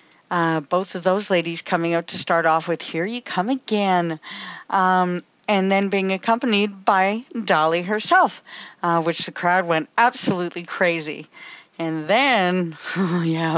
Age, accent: 50-69, American